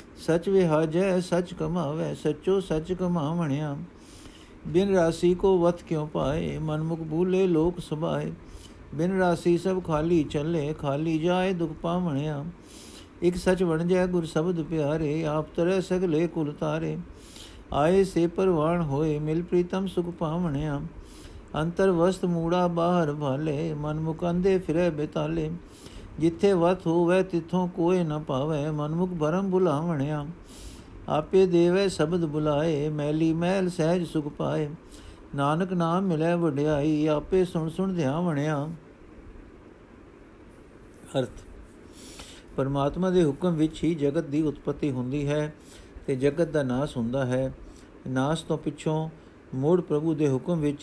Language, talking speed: Punjabi, 125 wpm